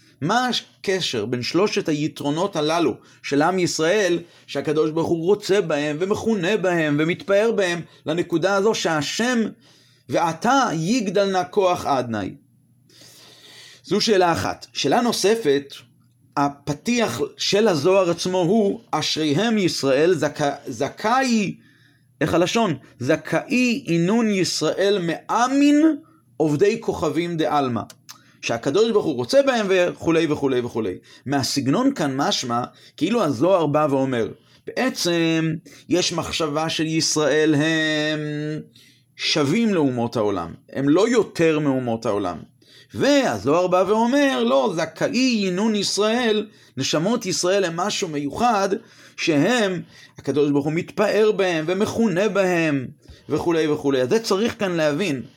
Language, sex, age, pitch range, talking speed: Hebrew, male, 30-49, 145-205 Hz, 110 wpm